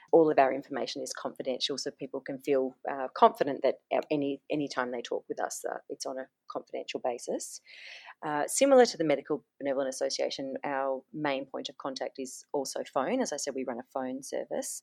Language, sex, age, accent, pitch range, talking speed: English, female, 30-49, Australian, 135-165 Hz, 195 wpm